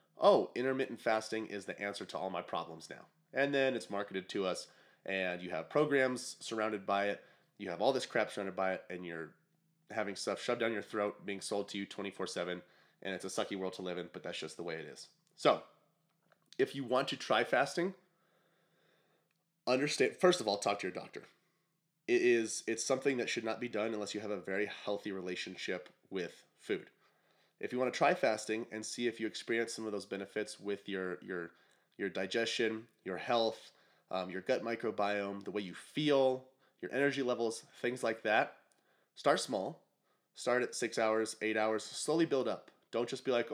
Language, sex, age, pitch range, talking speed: English, male, 30-49, 100-130 Hz, 195 wpm